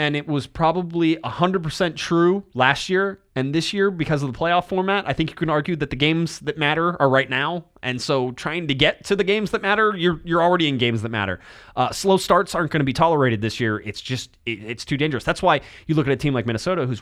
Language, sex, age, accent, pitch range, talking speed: English, male, 20-39, American, 115-155 Hz, 260 wpm